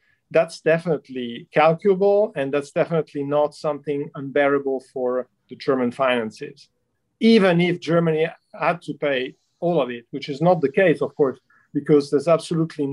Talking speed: 150 wpm